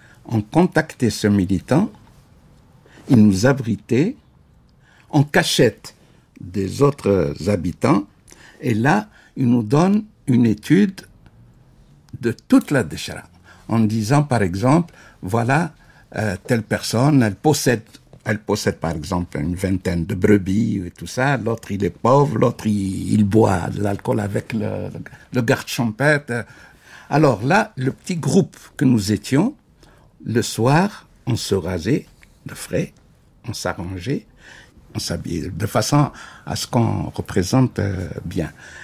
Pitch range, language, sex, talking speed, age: 100-140 Hz, French, male, 135 wpm, 60-79